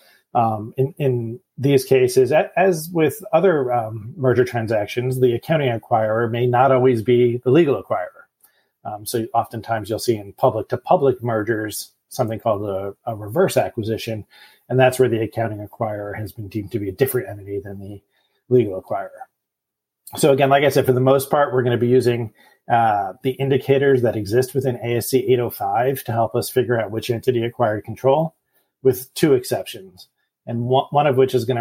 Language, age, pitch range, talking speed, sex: English, 30-49, 115-135 Hz, 175 wpm, male